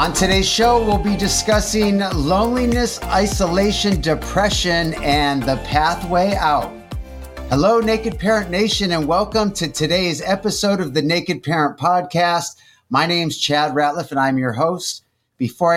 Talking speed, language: 135 wpm, English